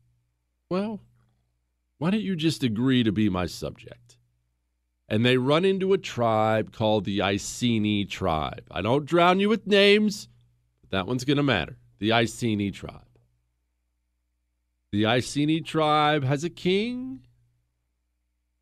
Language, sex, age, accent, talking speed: English, male, 40-59, American, 135 wpm